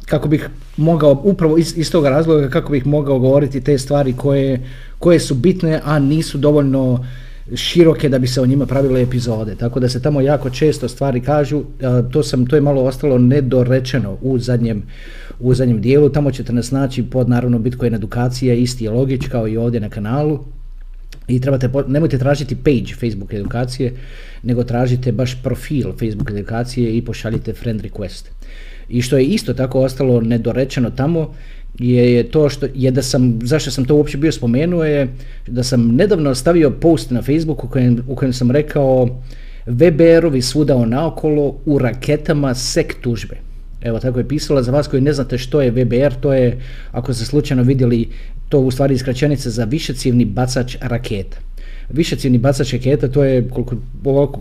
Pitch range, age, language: 120-145 Hz, 40-59, Croatian